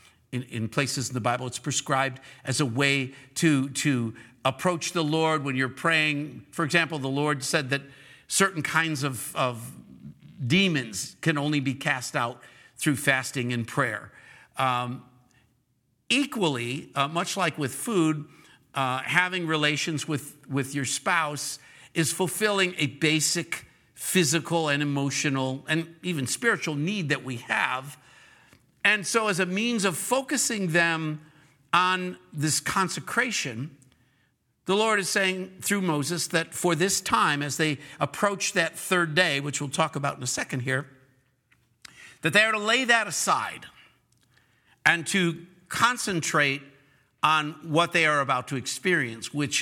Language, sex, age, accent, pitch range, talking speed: English, male, 50-69, American, 130-175 Hz, 145 wpm